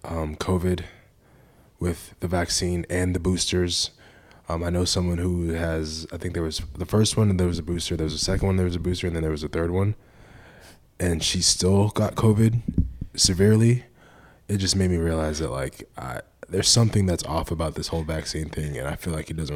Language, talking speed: English, 220 wpm